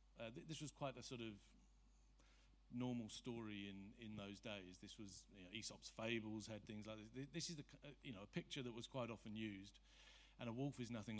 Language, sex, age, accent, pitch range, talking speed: English, male, 50-69, British, 100-130 Hz, 230 wpm